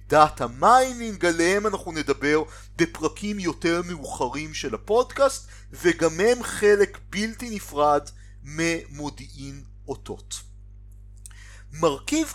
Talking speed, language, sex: 85 wpm, Hebrew, male